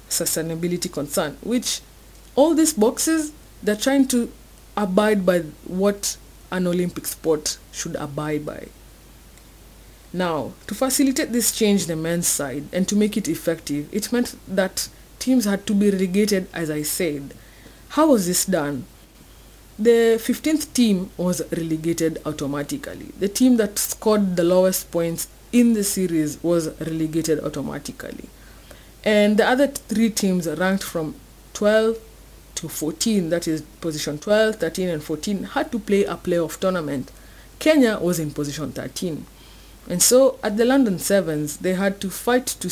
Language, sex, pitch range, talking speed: English, female, 160-220 Hz, 145 wpm